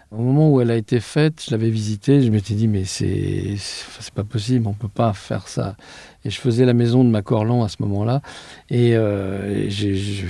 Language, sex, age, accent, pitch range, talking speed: French, male, 50-69, French, 105-130 Hz, 240 wpm